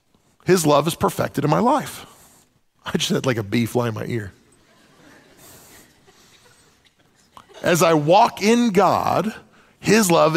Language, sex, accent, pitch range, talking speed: English, male, American, 145-185 Hz, 140 wpm